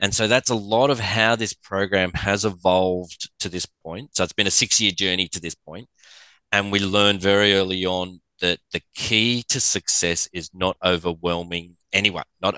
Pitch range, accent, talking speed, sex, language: 95-125 Hz, Australian, 185 wpm, male, English